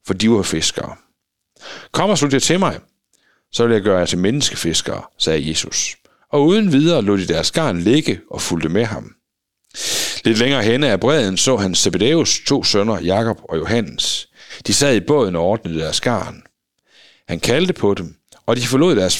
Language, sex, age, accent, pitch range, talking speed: Danish, male, 60-79, native, 95-150 Hz, 185 wpm